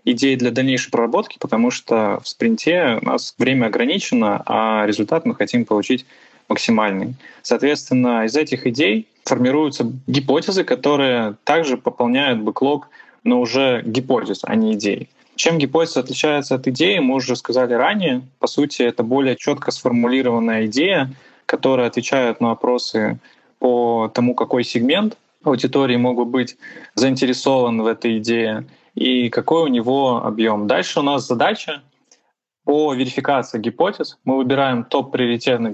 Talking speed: 135 wpm